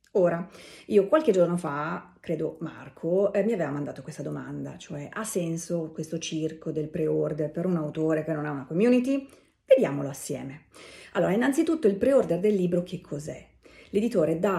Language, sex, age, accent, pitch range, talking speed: Italian, female, 40-59, native, 160-235 Hz, 165 wpm